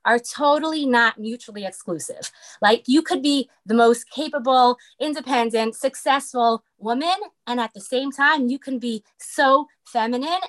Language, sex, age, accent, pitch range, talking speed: English, female, 20-39, American, 225-275 Hz, 145 wpm